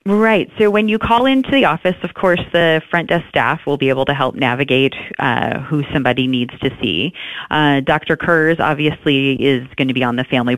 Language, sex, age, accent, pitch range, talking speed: English, female, 30-49, American, 135-170 Hz, 210 wpm